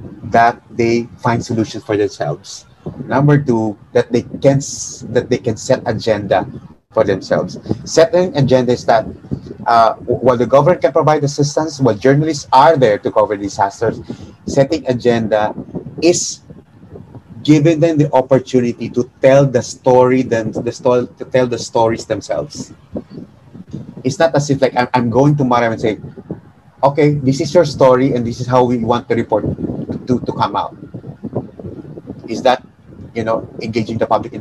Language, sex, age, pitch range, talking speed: English, male, 30-49, 115-135 Hz, 160 wpm